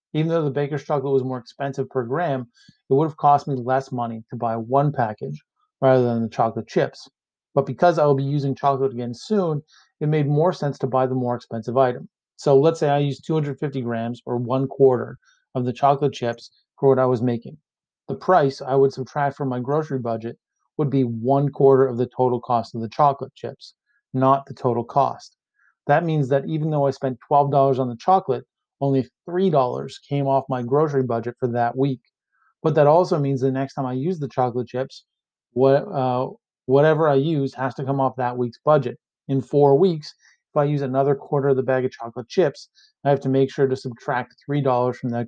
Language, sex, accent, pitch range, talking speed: English, male, American, 125-145 Hz, 210 wpm